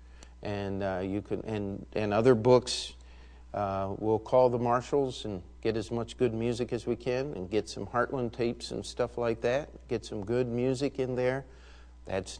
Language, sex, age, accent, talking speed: English, male, 50-69, American, 185 wpm